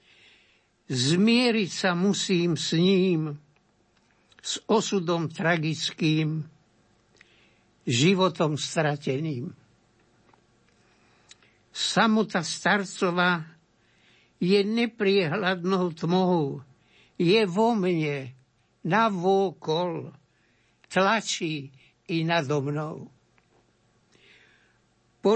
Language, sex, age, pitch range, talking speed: Slovak, male, 60-79, 145-195 Hz, 60 wpm